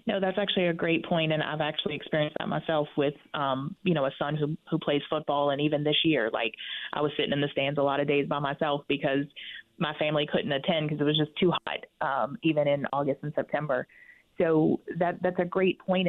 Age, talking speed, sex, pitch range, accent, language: 30-49, 230 wpm, female, 150-175 Hz, American, English